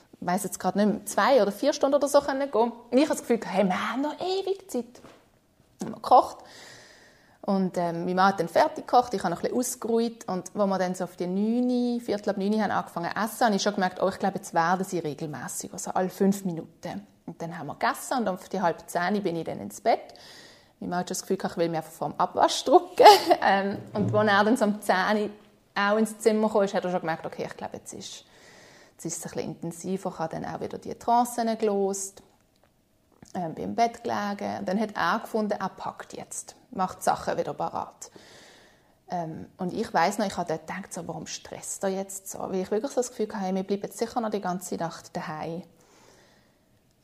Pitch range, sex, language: 180-230 Hz, female, German